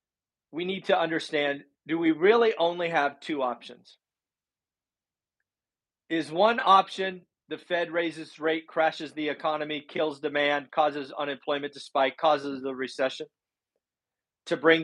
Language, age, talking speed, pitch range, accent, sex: English, 40-59, 130 wpm, 145-180 Hz, American, male